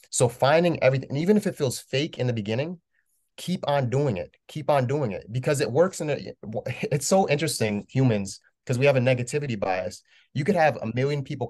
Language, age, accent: English, 30-49, American